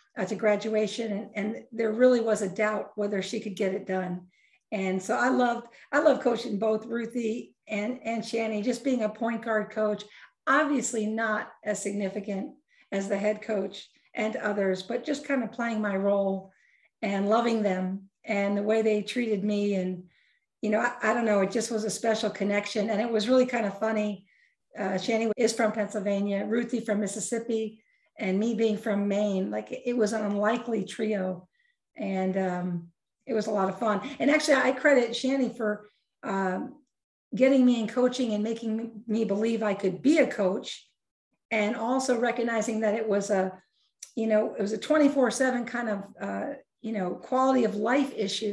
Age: 50-69